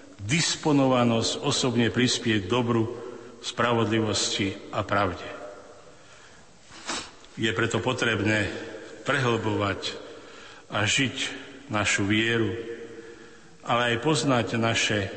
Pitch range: 105-120 Hz